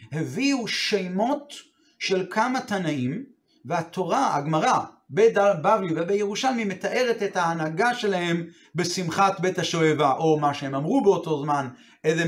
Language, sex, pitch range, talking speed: Hebrew, male, 170-225 Hz, 120 wpm